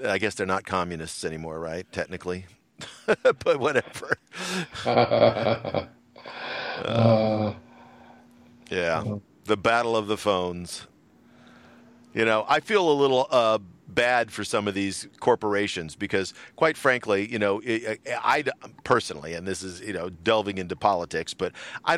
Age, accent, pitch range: 50-69, American, 95-125 Hz